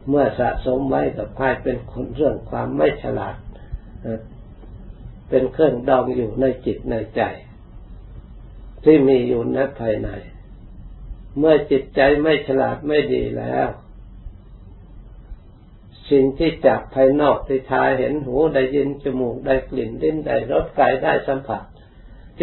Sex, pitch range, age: male, 110-135 Hz, 60-79